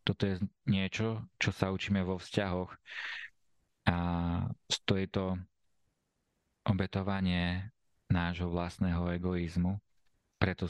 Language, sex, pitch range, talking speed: Slovak, male, 90-100 Hz, 95 wpm